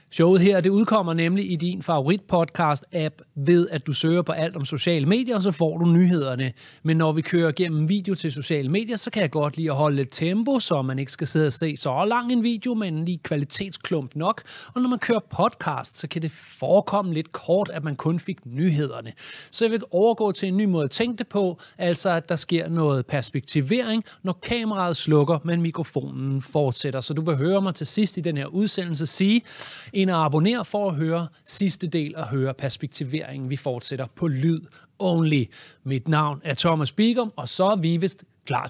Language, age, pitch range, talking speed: Danish, 30-49, 150-205 Hz, 205 wpm